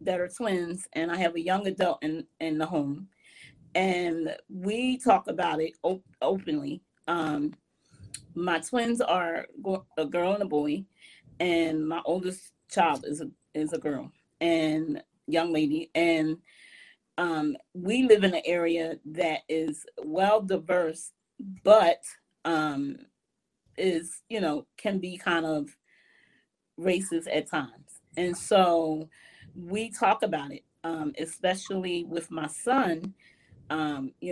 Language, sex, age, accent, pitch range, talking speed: English, female, 30-49, American, 160-185 Hz, 130 wpm